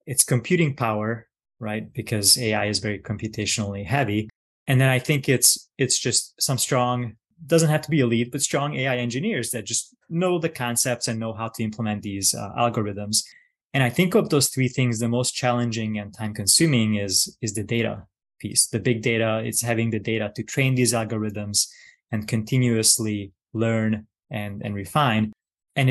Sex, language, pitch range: male, English, 110-135 Hz